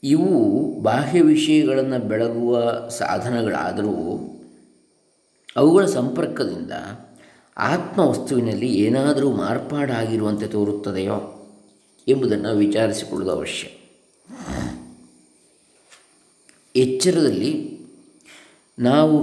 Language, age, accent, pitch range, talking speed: English, 20-39, Indian, 100-145 Hz, 60 wpm